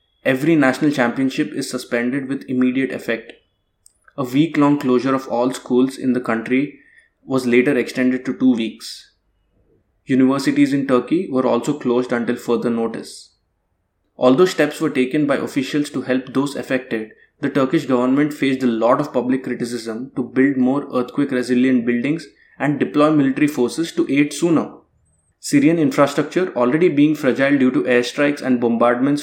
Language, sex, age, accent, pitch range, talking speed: English, male, 20-39, Indian, 125-145 Hz, 150 wpm